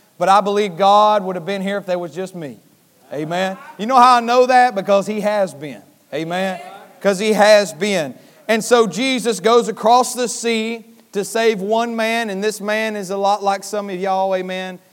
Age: 30-49